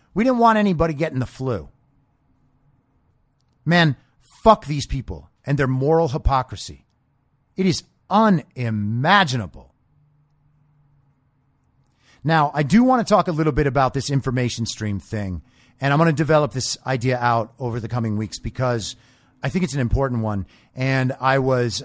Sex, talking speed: male, 150 wpm